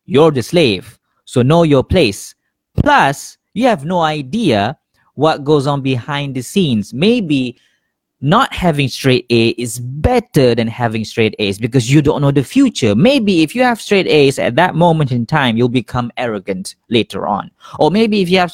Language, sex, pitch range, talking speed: Malay, male, 120-165 Hz, 180 wpm